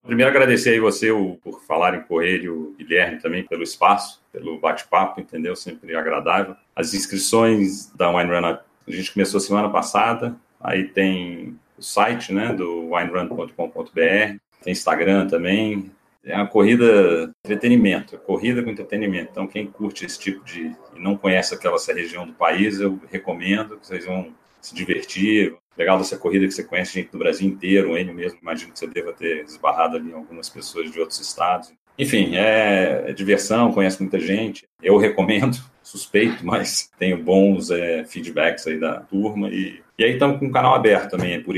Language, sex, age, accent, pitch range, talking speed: Portuguese, male, 40-59, Brazilian, 95-105 Hz, 175 wpm